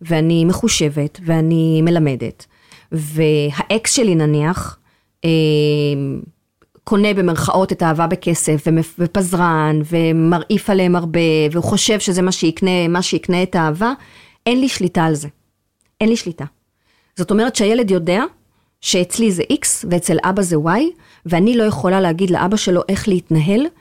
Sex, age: female, 30-49